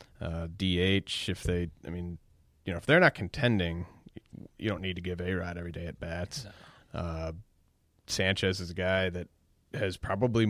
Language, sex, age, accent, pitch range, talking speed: English, male, 20-39, American, 90-100 Hz, 175 wpm